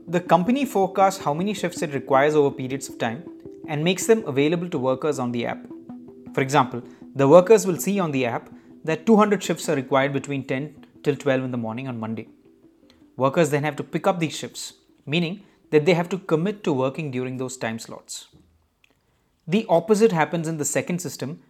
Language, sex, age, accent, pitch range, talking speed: English, male, 30-49, Indian, 135-185 Hz, 200 wpm